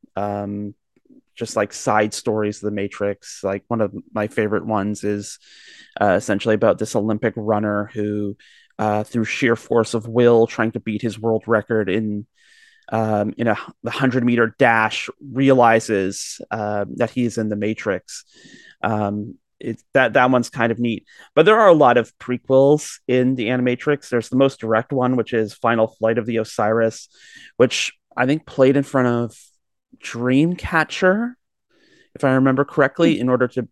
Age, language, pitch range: 30-49, English, 110-130 Hz